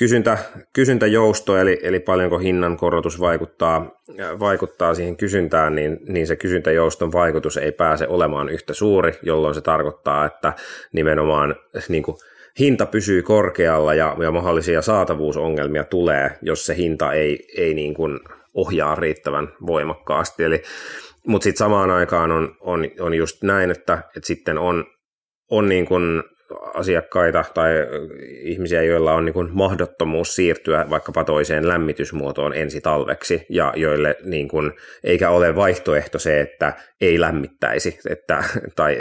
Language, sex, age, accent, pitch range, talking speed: Finnish, male, 30-49, native, 75-90 Hz, 130 wpm